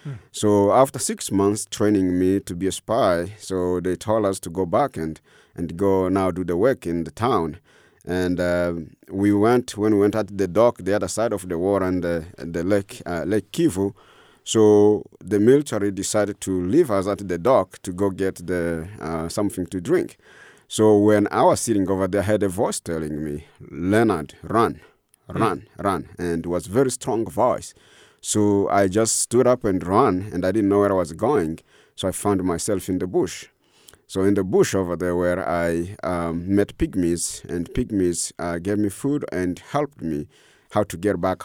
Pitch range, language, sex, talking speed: 90-105 Hz, English, male, 195 wpm